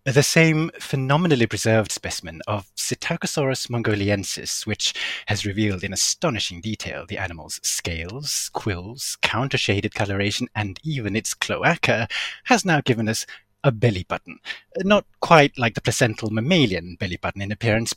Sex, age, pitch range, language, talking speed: male, 30-49, 100-145 Hz, English, 135 wpm